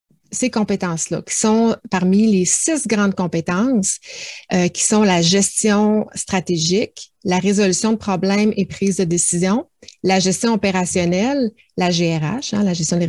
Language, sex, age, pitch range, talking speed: French, female, 30-49, 180-225 Hz, 145 wpm